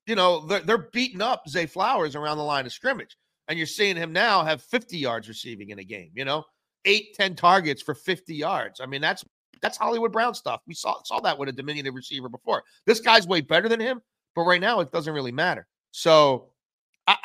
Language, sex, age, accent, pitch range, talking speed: English, male, 40-59, American, 120-165 Hz, 220 wpm